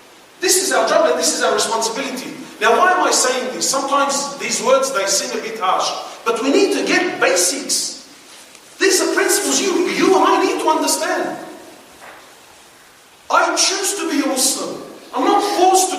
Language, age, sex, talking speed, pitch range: English, 30-49, male, 185 wpm, 280-370 Hz